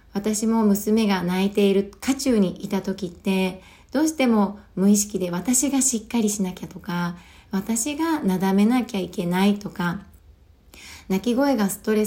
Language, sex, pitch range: Japanese, female, 190-235 Hz